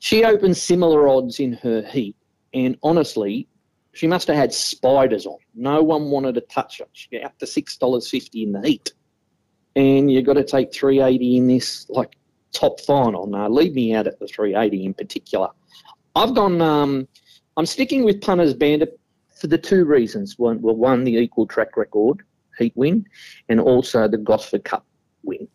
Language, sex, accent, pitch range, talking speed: English, male, Australian, 110-165 Hz, 180 wpm